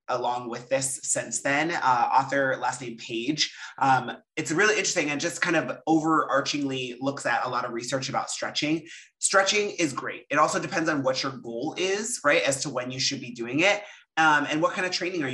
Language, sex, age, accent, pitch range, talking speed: English, male, 30-49, American, 125-165 Hz, 210 wpm